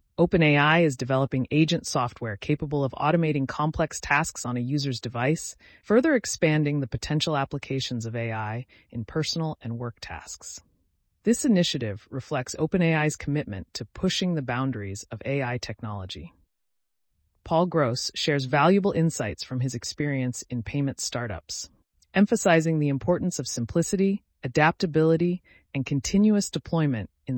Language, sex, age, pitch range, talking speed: English, female, 30-49, 115-160 Hz, 130 wpm